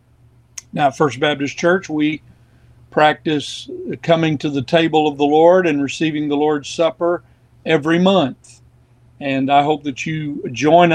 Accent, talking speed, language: American, 150 wpm, English